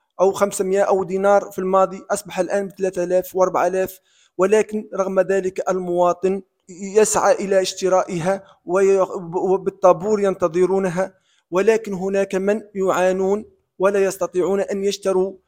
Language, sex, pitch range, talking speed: Arabic, male, 180-200 Hz, 110 wpm